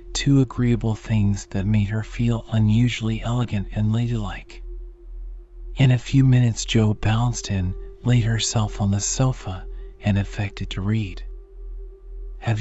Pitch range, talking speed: 100-130 Hz, 135 wpm